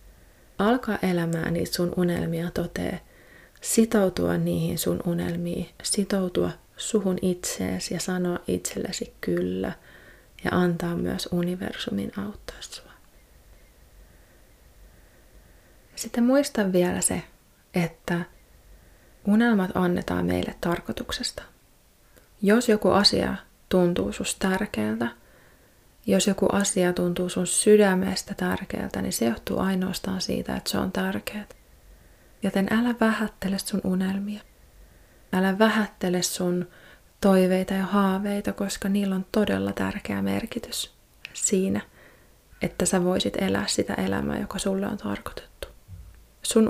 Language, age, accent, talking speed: Finnish, 30-49, native, 105 wpm